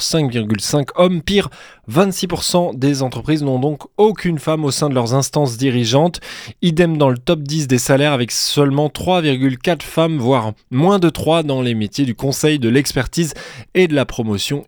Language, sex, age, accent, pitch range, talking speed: French, male, 20-39, French, 120-175 Hz, 170 wpm